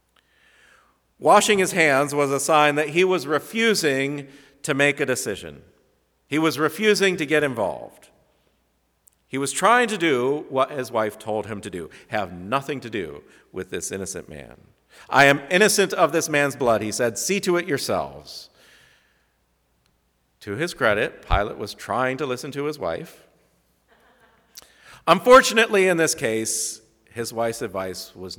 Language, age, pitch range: English, 50-69, 115-165 Hz